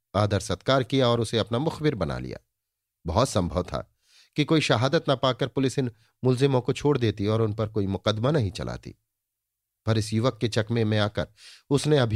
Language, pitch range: Hindi, 105-135 Hz